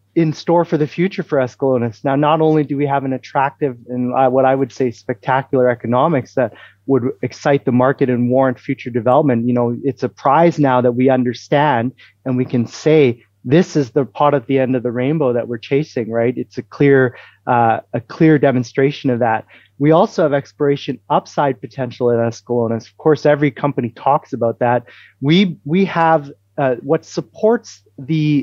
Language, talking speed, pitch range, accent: English, 190 wpm, 125-145 Hz, American